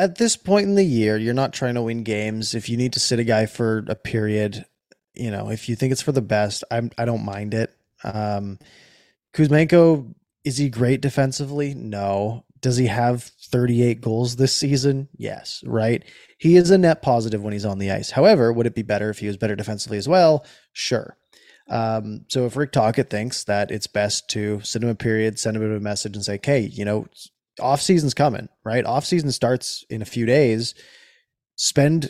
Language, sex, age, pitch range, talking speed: English, male, 20-39, 110-135 Hz, 205 wpm